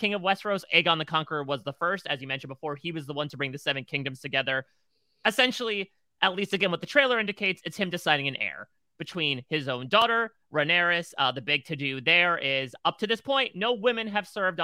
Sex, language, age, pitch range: male, English, 30-49, 135-185 Hz